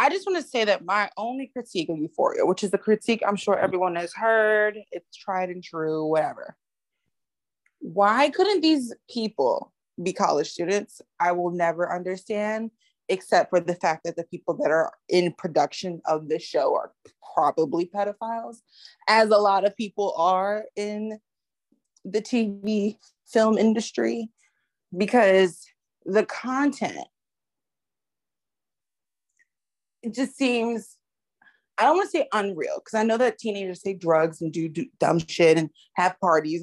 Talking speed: 145 wpm